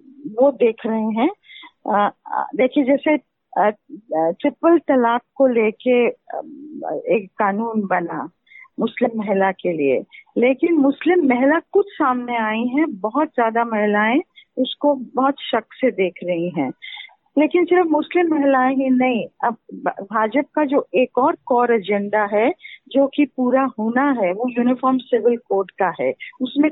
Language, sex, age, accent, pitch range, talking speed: Hindi, female, 40-59, native, 230-295 Hz, 135 wpm